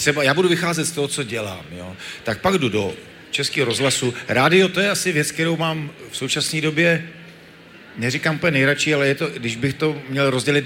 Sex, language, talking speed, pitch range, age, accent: male, Czech, 205 wpm, 120-150 Hz, 40-59, native